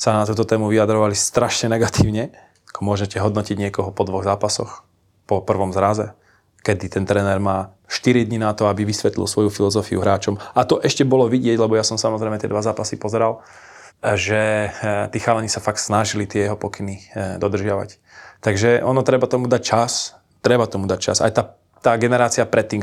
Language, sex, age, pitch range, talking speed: Slovak, male, 20-39, 105-115 Hz, 175 wpm